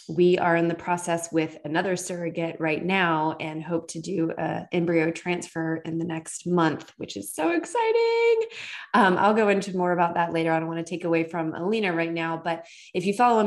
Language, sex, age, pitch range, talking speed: English, female, 20-39, 170-210 Hz, 210 wpm